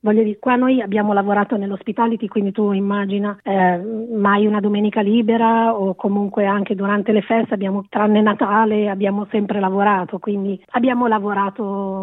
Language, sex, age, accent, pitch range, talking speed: Italian, female, 30-49, native, 200-230 Hz, 150 wpm